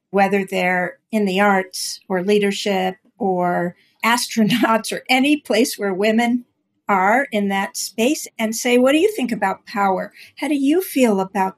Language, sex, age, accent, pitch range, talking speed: English, female, 50-69, American, 200-245 Hz, 160 wpm